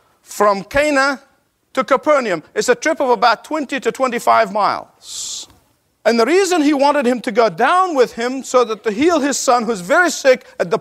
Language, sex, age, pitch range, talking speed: English, male, 50-69, 200-275 Hz, 195 wpm